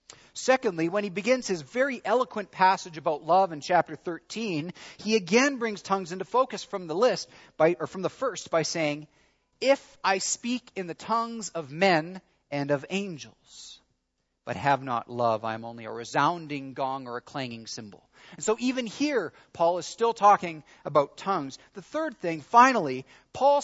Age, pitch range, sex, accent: 40-59, 145-205 Hz, male, American